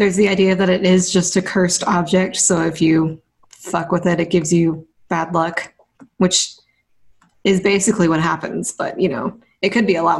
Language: English